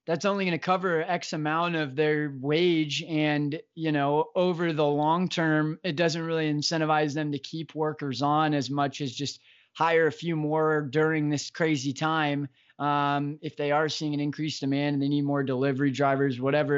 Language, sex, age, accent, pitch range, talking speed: English, male, 20-39, American, 145-165 Hz, 190 wpm